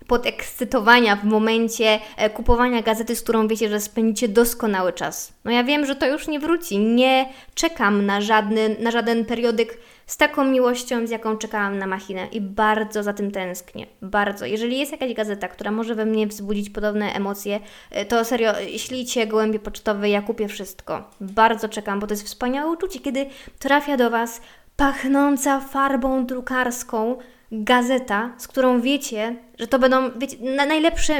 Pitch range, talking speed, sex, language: 210-250 Hz, 155 wpm, female, Polish